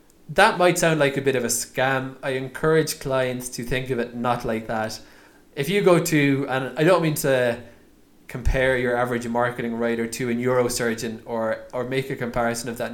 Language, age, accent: English, 20-39, Irish